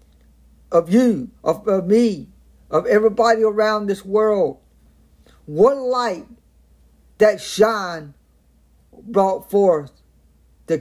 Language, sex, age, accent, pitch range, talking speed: English, male, 50-69, American, 155-225 Hz, 95 wpm